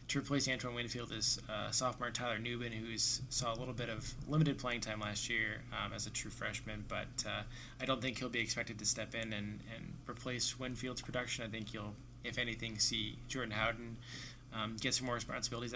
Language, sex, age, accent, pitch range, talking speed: English, male, 20-39, American, 110-125 Hz, 205 wpm